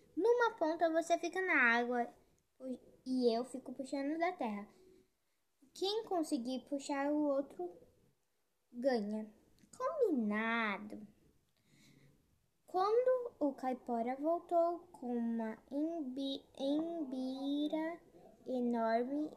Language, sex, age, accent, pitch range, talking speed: Portuguese, female, 10-29, Brazilian, 240-315 Hz, 85 wpm